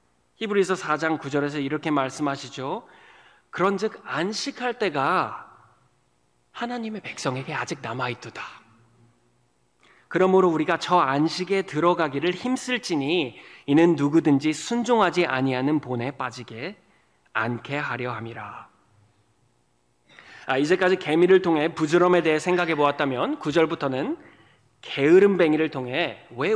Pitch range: 125-175 Hz